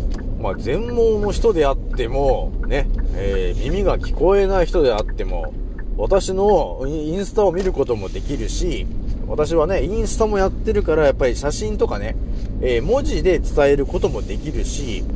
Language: Japanese